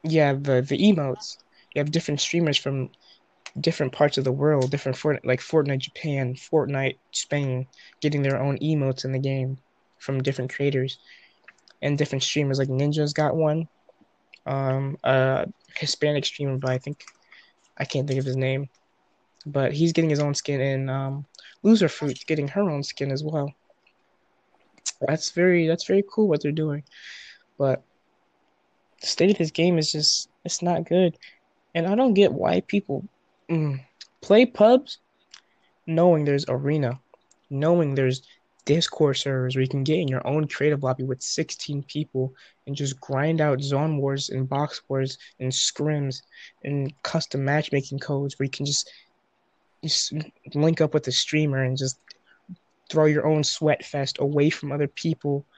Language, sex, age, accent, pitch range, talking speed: English, male, 20-39, American, 135-155 Hz, 160 wpm